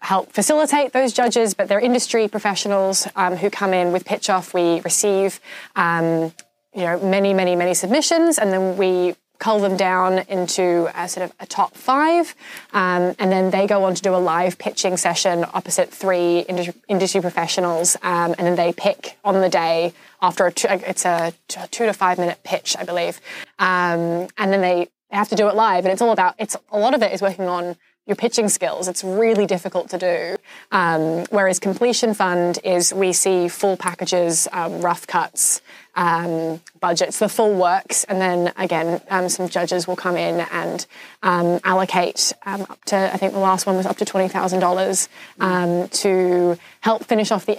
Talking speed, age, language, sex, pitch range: 185 wpm, 10-29, English, female, 180-200 Hz